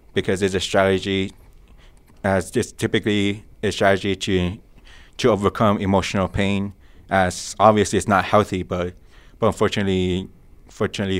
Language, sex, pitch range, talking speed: English, male, 95-105 Hz, 125 wpm